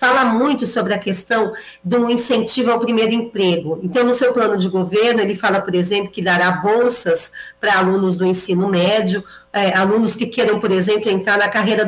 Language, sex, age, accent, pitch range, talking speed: Portuguese, female, 40-59, Brazilian, 190-230 Hz, 180 wpm